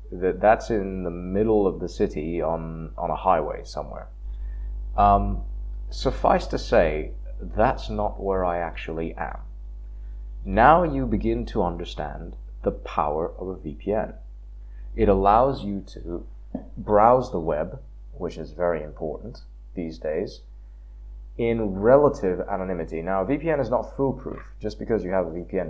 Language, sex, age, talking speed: English, male, 30-49, 140 wpm